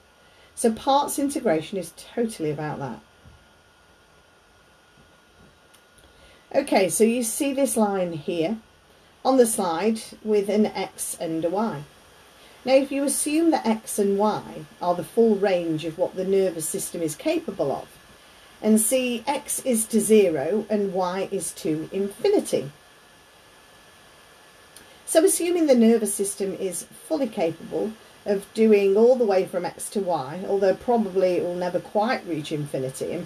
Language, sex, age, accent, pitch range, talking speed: English, female, 40-59, British, 180-240 Hz, 145 wpm